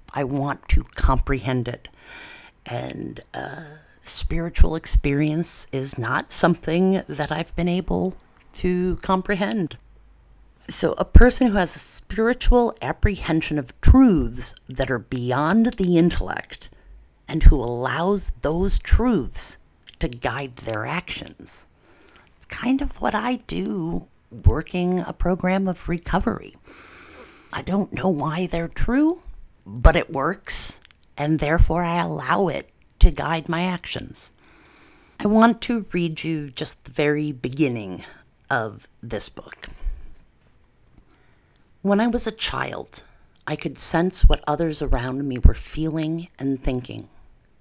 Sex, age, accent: female, 50-69, American